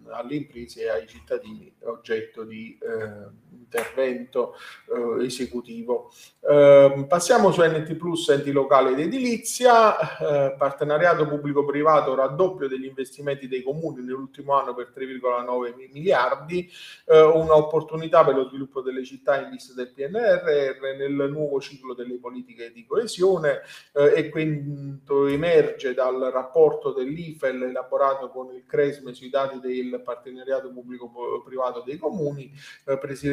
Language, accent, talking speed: Italian, native, 130 wpm